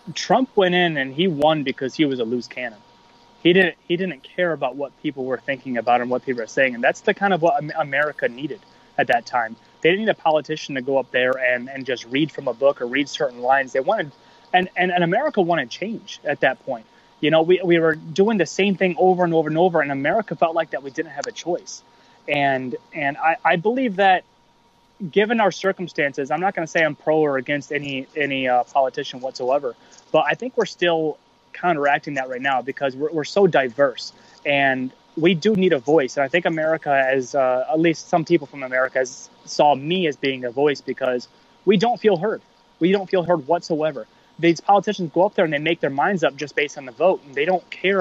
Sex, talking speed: male, 230 wpm